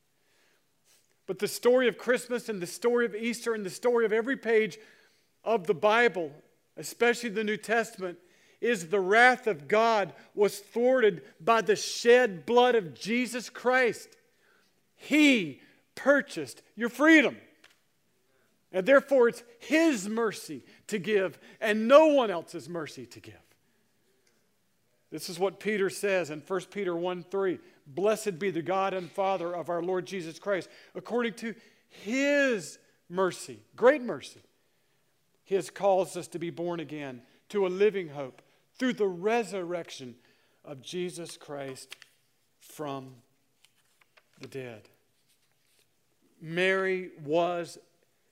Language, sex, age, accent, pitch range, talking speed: English, male, 50-69, American, 165-225 Hz, 130 wpm